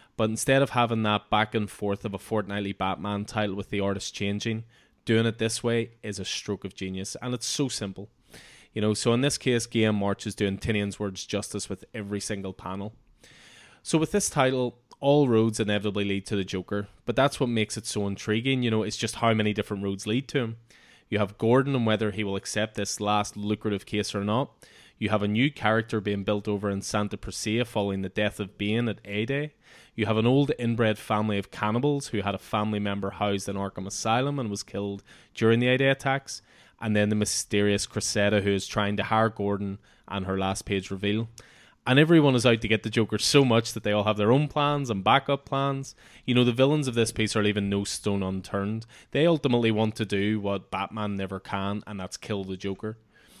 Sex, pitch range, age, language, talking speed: male, 100-120 Hz, 20-39, English, 220 wpm